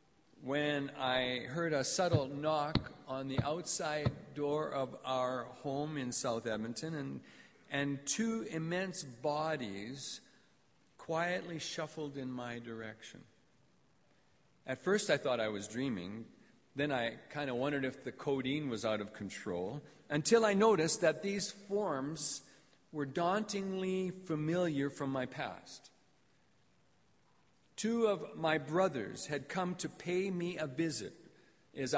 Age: 50-69